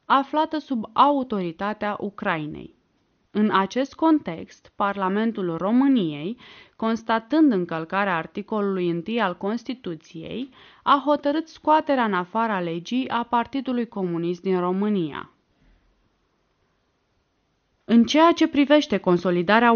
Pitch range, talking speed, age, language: 190-255 Hz, 95 wpm, 20-39, Romanian